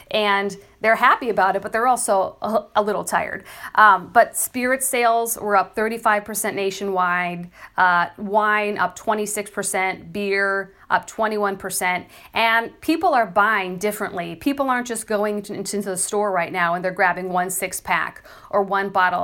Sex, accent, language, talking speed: female, American, English, 155 wpm